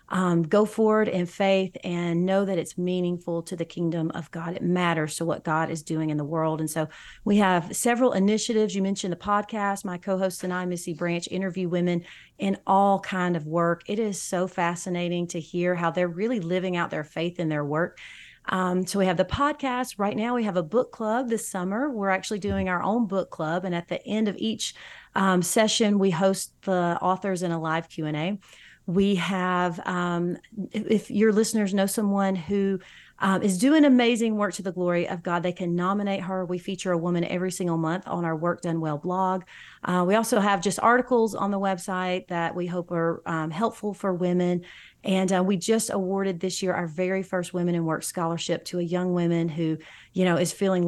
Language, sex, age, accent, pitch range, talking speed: English, female, 30-49, American, 175-200 Hz, 210 wpm